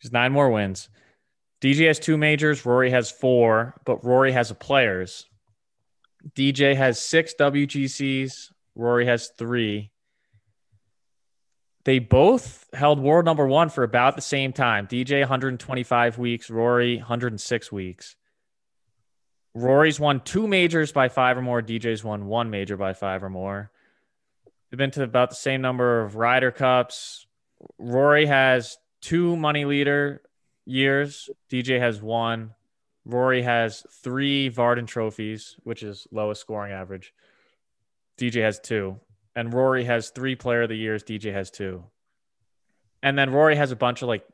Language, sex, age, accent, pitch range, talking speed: English, male, 20-39, American, 110-135 Hz, 145 wpm